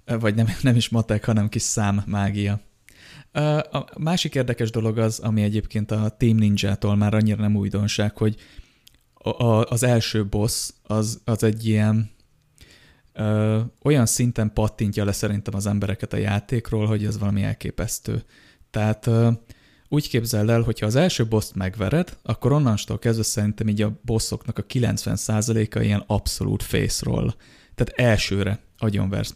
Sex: male